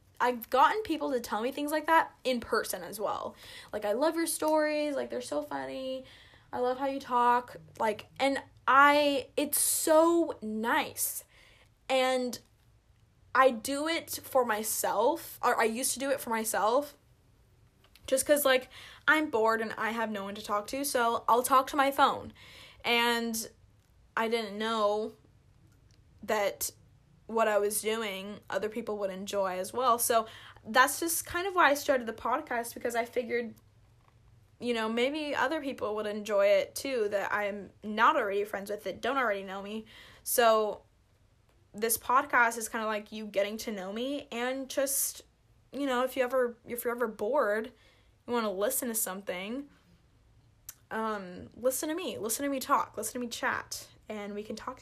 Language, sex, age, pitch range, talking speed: English, female, 10-29, 200-260 Hz, 175 wpm